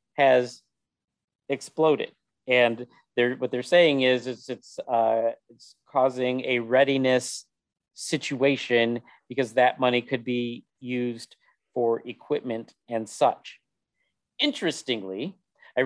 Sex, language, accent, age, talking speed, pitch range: male, English, American, 40-59, 105 wpm, 120-135 Hz